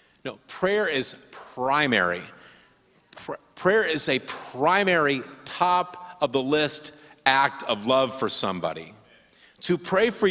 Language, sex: English, male